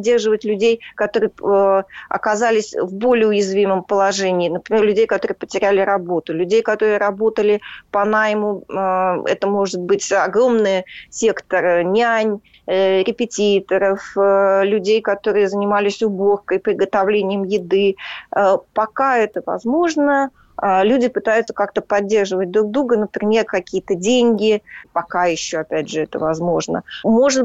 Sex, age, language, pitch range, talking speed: female, 20-39, Russian, 185-225 Hz, 105 wpm